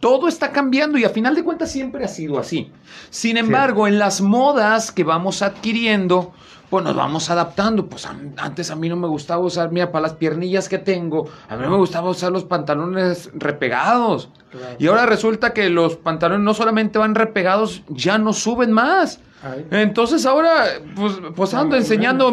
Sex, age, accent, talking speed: male, 40-59, Mexican, 180 wpm